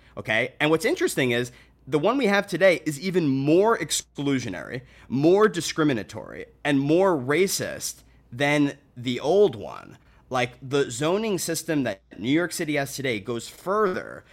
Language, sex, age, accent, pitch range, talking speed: English, male, 30-49, American, 120-160 Hz, 145 wpm